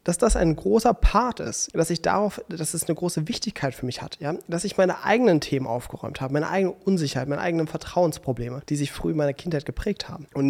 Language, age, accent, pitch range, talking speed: German, 30-49, German, 140-180 Hz, 230 wpm